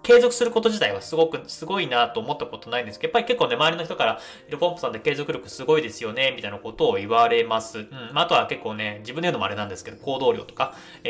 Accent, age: native, 20-39